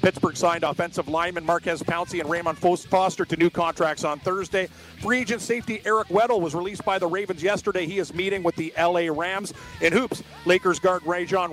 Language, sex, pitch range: English, male, 170-205 Hz